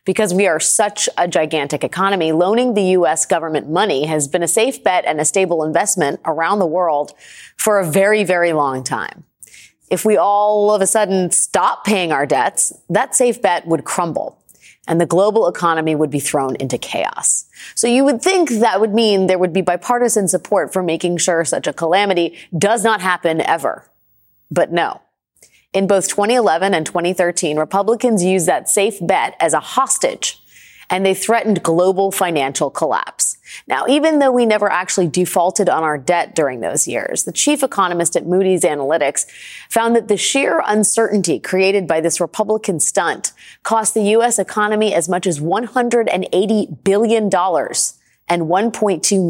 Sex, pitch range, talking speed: female, 170-215 Hz, 165 wpm